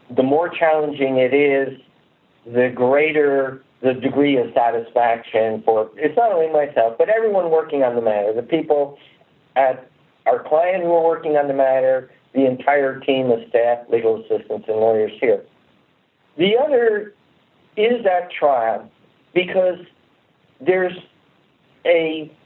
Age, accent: 60-79, American